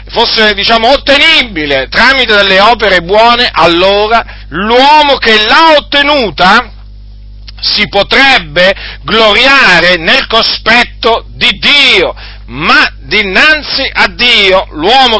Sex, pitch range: male, 170-265 Hz